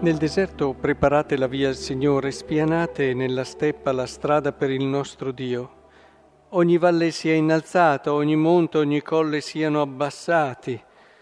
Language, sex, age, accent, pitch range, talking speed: Italian, male, 50-69, native, 140-175 Hz, 140 wpm